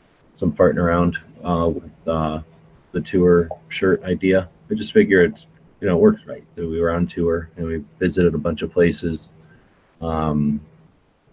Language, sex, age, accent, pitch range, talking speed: English, male, 30-49, American, 80-90 Hz, 165 wpm